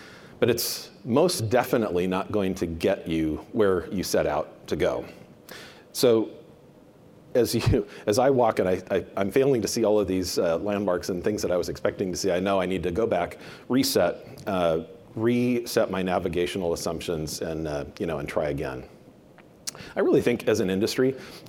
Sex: male